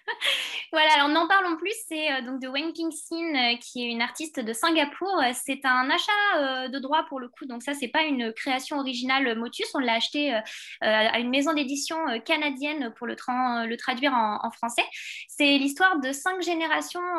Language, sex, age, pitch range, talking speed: French, female, 20-39, 240-300 Hz, 205 wpm